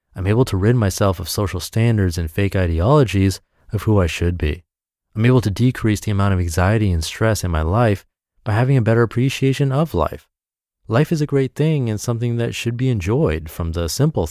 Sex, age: male, 30-49